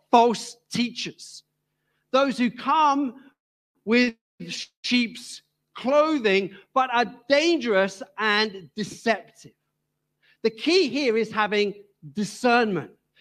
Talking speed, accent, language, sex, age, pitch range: 85 wpm, British, English, male, 50-69, 205-260 Hz